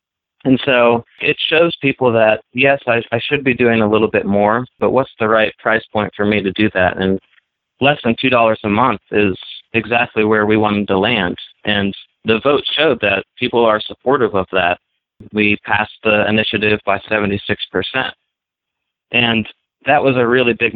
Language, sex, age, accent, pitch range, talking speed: English, male, 30-49, American, 100-115 Hz, 180 wpm